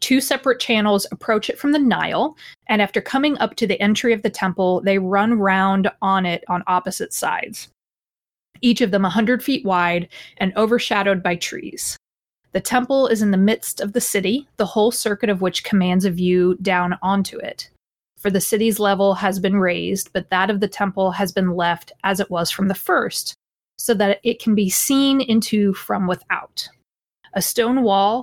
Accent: American